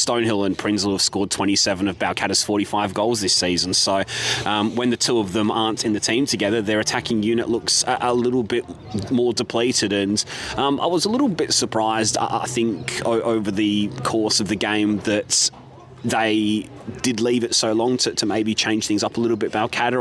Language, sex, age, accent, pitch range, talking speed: English, male, 30-49, Australian, 105-115 Hz, 205 wpm